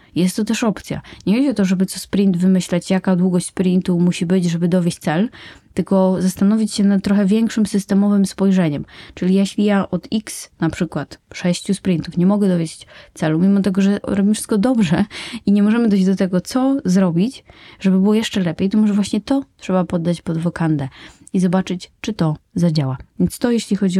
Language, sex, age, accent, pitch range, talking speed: Polish, female, 20-39, native, 175-220 Hz, 190 wpm